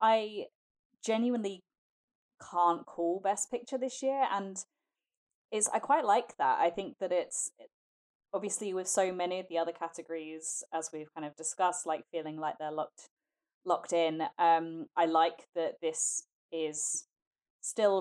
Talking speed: 150 wpm